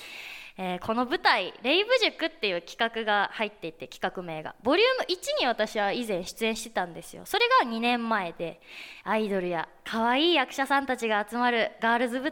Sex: female